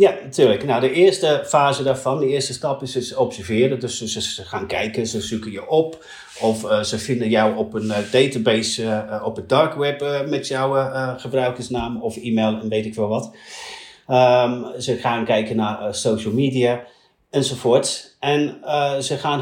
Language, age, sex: Dutch, 40-59, male